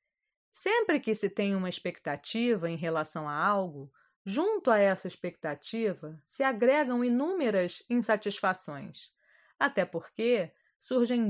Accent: Brazilian